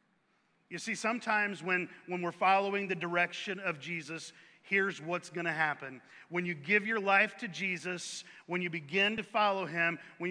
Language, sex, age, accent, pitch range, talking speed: English, male, 40-59, American, 180-225 Hz, 175 wpm